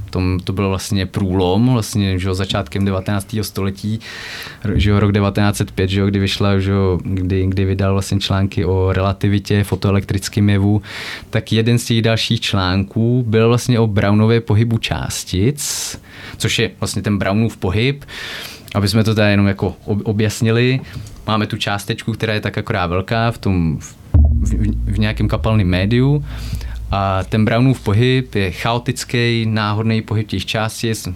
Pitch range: 100-115 Hz